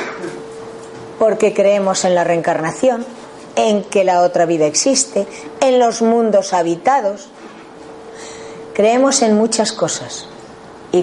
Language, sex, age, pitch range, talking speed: Spanish, female, 40-59, 195-270 Hz, 110 wpm